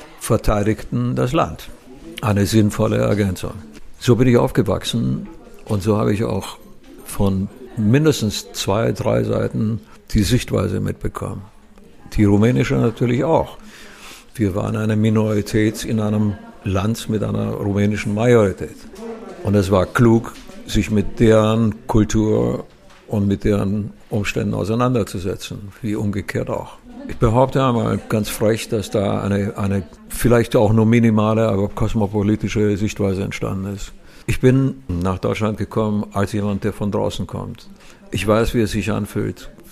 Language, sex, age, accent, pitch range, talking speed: German, male, 60-79, German, 100-115 Hz, 135 wpm